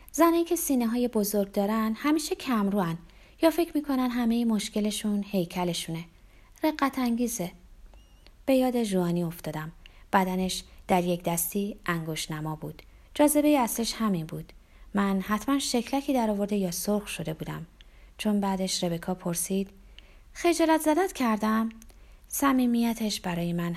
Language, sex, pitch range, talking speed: Persian, female, 180-255 Hz, 125 wpm